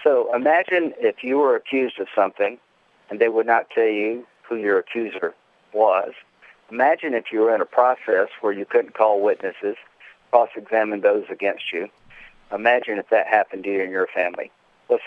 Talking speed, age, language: 175 wpm, 50-69, English